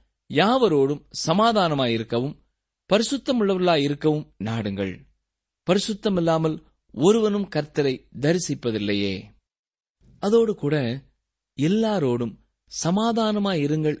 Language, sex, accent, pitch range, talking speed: Tamil, male, native, 120-185 Hz, 75 wpm